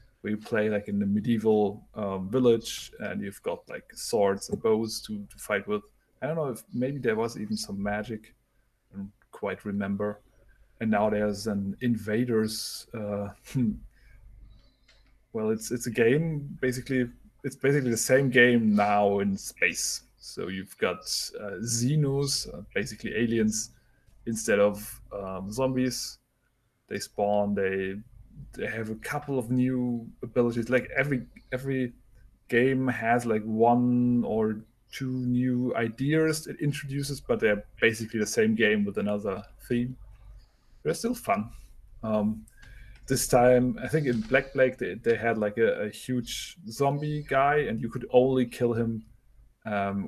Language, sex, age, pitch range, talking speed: English, male, 20-39, 105-130 Hz, 150 wpm